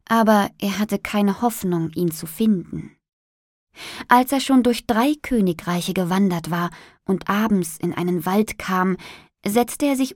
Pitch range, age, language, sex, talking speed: 180-230 Hz, 20-39, Arabic, female, 150 wpm